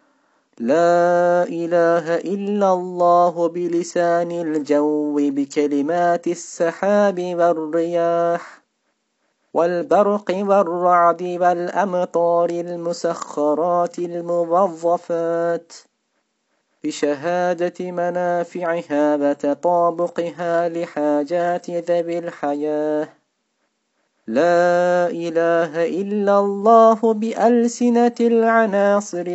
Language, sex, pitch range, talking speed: Turkish, male, 170-180 Hz, 55 wpm